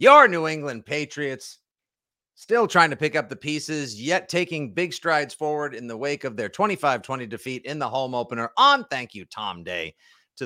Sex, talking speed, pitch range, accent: male, 190 wpm, 120-170 Hz, American